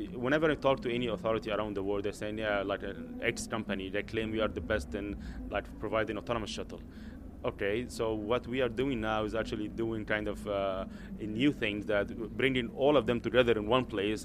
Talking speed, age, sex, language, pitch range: 215 wpm, 30-49, male, English, 105-120 Hz